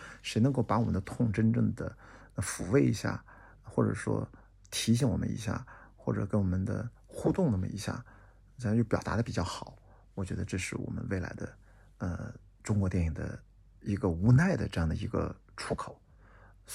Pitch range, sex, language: 95-115 Hz, male, Chinese